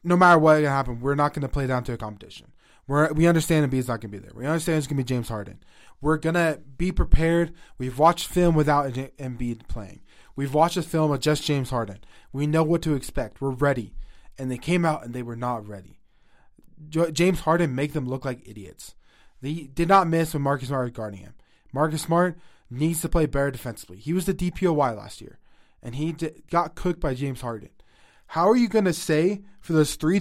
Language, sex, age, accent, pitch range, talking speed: English, male, 20-39, American, 135-175 Hz, 215 wpm